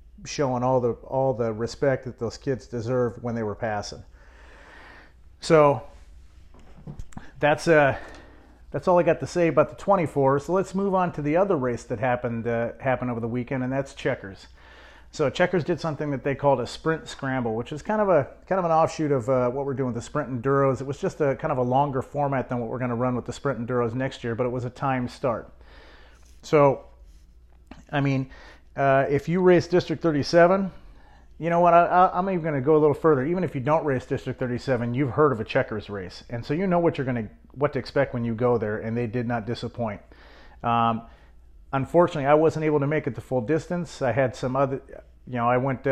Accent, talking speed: American, 235 wpm